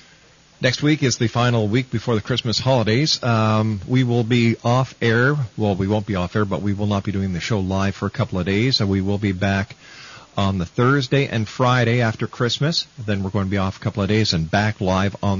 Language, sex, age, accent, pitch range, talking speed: English, male, 50-69, American, 100-130 Hz, 240 wpm